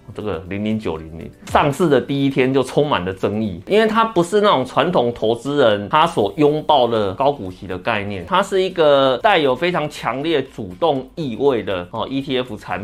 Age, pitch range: 30-49, 110-155 Hz